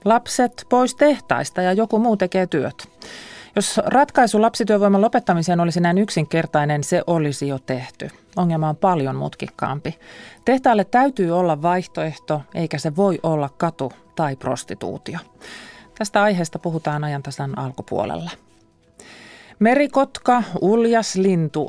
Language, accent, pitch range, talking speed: Finnish, native, 150-195 Hz, 115 wpm